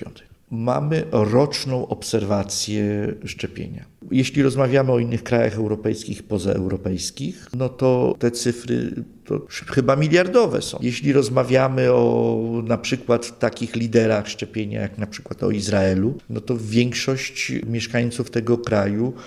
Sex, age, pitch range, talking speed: male, 50-69, 105-135 Hz, 115 wpm